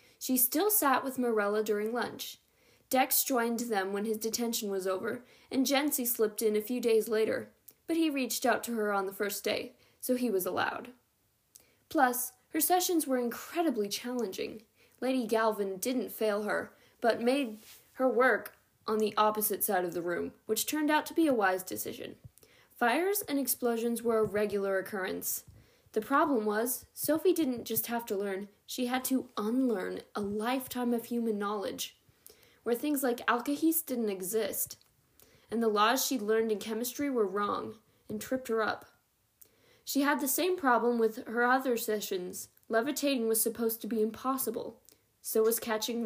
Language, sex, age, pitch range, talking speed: English, female, 10-29, 215-260 Hz, 170 wpm